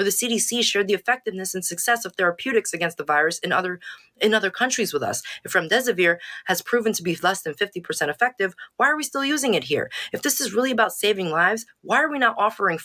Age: 20-39